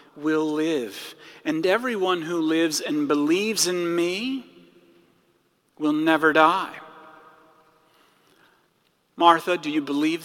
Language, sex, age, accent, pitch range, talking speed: English, male, 40-59, American, 150-225 Hz, 100 wpm